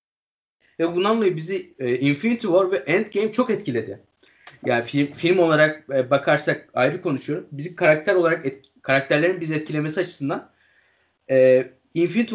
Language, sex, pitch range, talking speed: Turkish, male, 130-180 Hz, 135 wpm